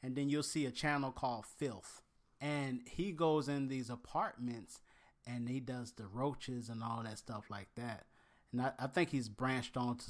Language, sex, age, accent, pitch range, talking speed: English, male, 30-49, American, 110-140 Hz, 195 wpm